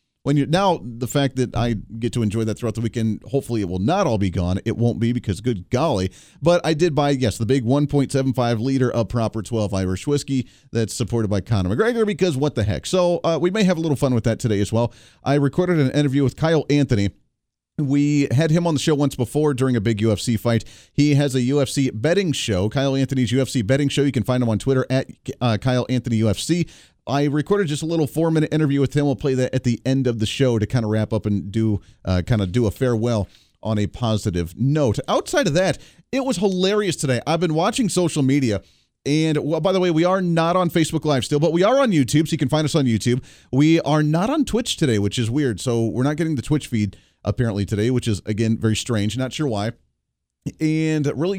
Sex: male